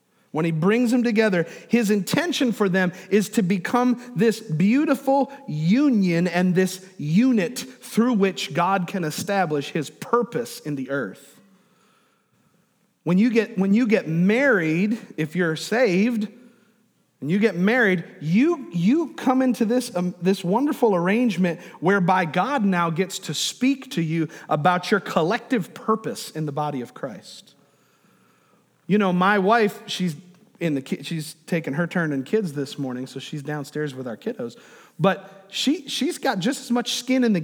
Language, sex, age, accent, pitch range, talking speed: English, male, 40-59, American, 175-235 Hz, 160 wpm